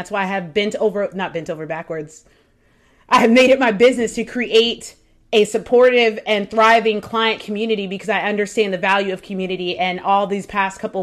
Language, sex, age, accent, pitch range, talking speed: English, female, 30-49, American, 205-270 Hz, 195 wpm